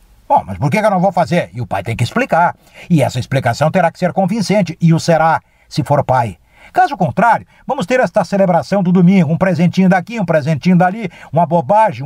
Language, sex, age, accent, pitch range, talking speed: Portuguese, male, 60-79, Brazilian, 155-200 Hz, 220 wpm